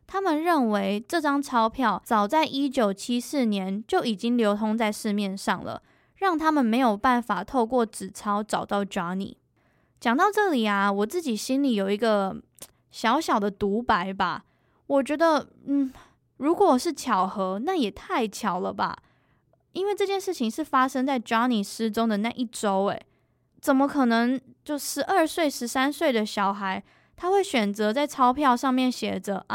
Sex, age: female, 10-29